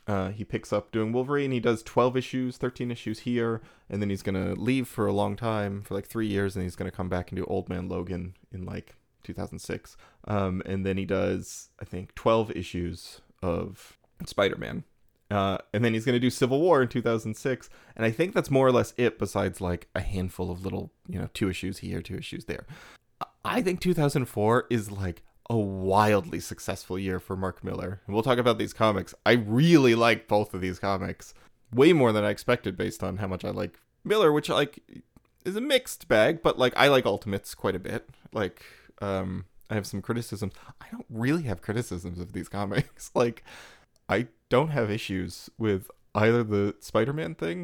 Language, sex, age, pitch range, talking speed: English, male, 20-39, 95-120 Hz, 200 wpm